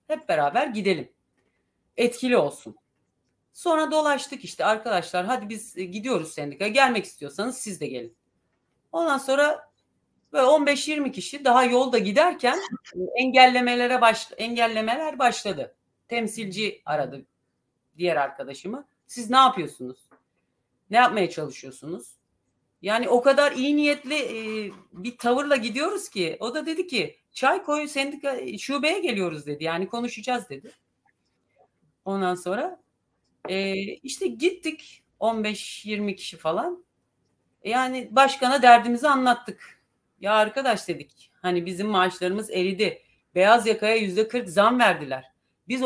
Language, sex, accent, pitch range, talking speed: Turkish, female, native, 180-270 Hz, 110 wpm